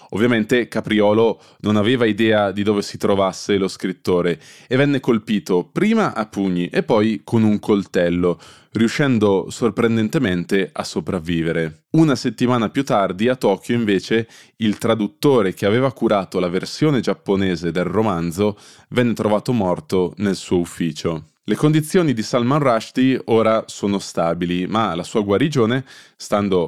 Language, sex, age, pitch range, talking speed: Italian, male, 20-39, 95-120 Hz, 140 wpm